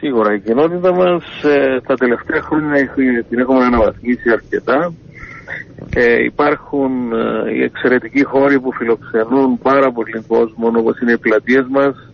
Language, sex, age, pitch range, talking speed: Greek, male, 50-69, 125-150 Hz, 140 wpm